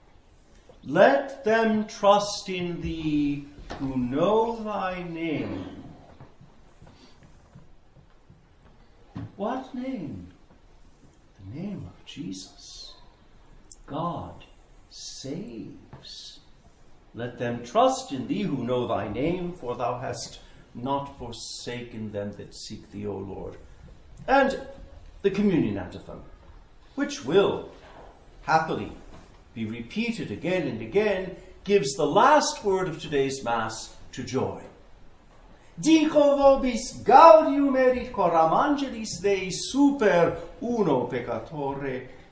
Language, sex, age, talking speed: English, male, 60-79, 95 wpm